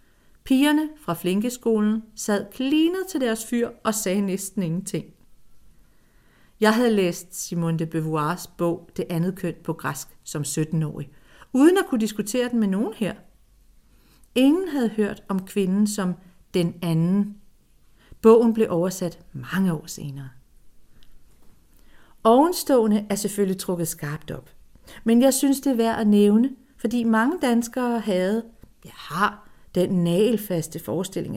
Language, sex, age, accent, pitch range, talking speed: Danish, female, 40-59, native, 170-225 Hz, 135 wpm